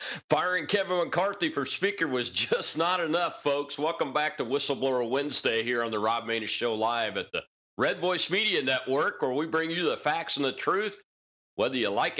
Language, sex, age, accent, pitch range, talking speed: English, male, 40-59, American, 145-190 Hz, 195 wpm